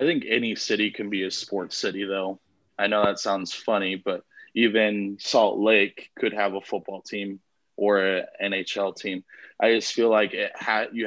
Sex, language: male, English